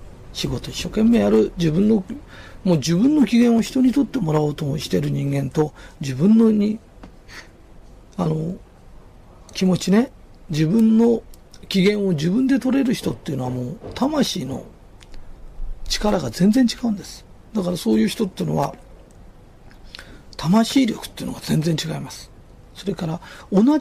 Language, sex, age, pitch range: Japanese, male, 40-59, 160-245 Hz